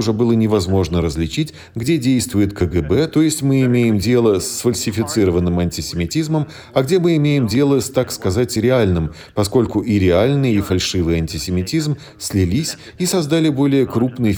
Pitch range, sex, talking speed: 95-130 Hz, male, 145 wpm